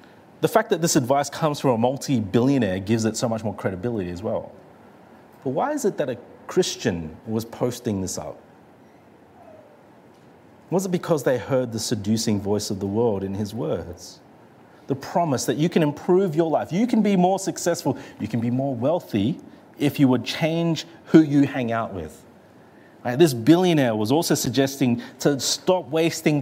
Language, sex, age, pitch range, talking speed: English, male, 30-49, 110-160 Hz, 175 wpm